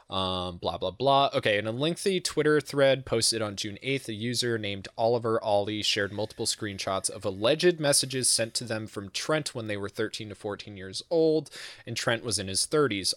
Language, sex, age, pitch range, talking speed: English, male, 20-39, 95-115 Hz, 200 wpm